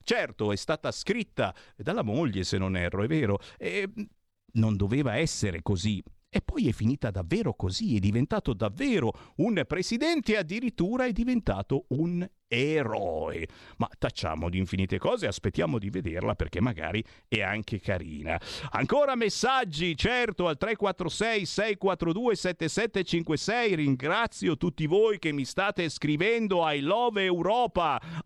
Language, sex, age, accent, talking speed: Italian, male, 50-69, native, 125 wpm